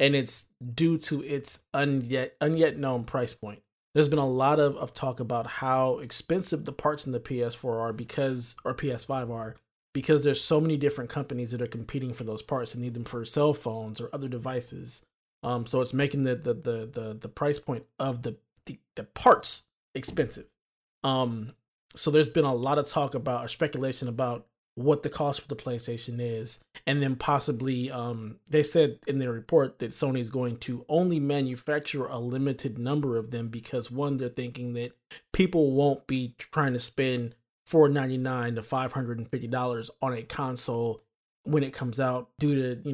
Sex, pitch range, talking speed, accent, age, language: male, 120-145 Hz, 185 wpm, American, 20-39, English